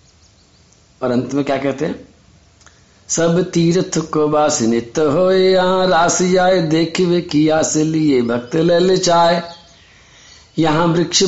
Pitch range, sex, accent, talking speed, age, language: 145-185 Hz, male, native, 90 wpm, 50-69, Hindi